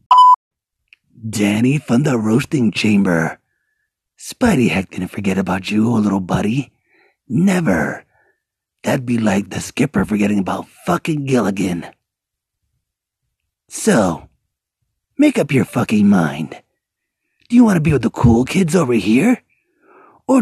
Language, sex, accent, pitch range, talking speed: English, male, American, 100-135 Hz, 120 wpm